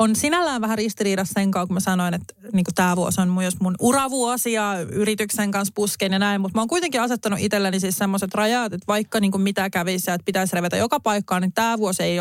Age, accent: 30-49, native